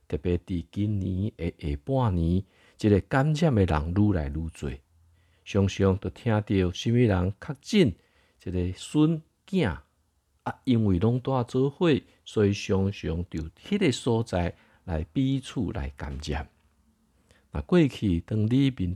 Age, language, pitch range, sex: 50-69, Chinese, 85-115 Hz, male